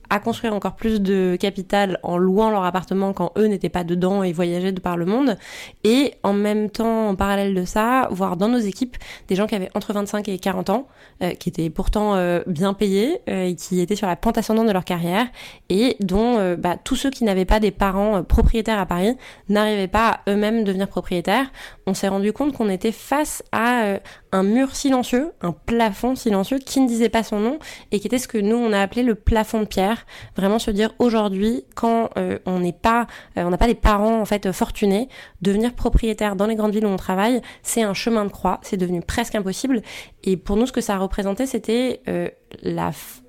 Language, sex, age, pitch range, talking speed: French, female, 20-39, 190-230 Hz, 220 wpm